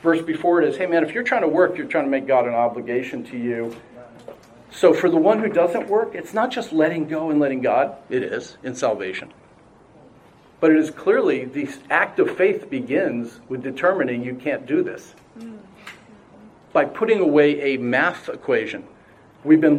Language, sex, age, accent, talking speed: English, male, 50-69, American, 190 wpm